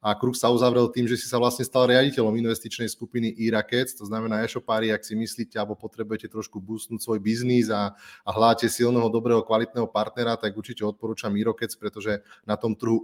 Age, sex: 30-49, male